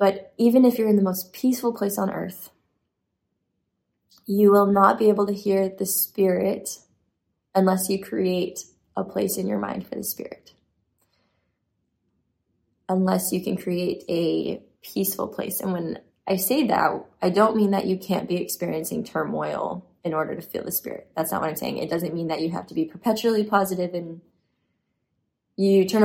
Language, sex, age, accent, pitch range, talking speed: English, female, 20-39, American, 175-205 Hz, 175 wpm